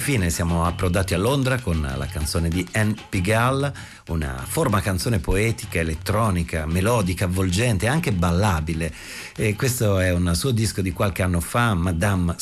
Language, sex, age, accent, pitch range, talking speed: Italian, male, 50-69, native, 90-115 Hz, 155 wpm